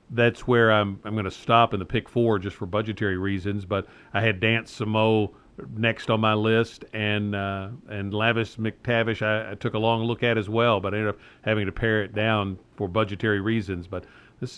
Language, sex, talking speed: English, male, 215 wpm